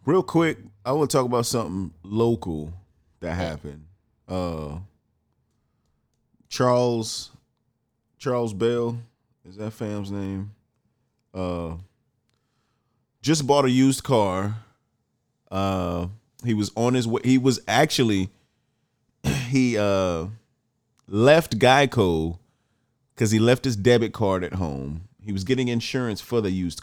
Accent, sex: American, male